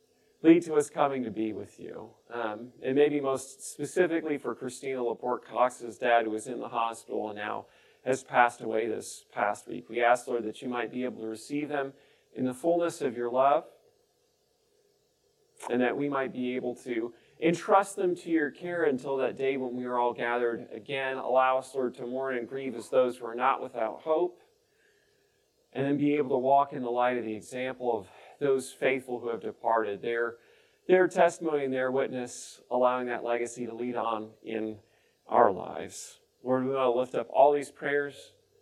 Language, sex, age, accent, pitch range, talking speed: English, male, 40-59, American, 125-170 Hz, 195 wpm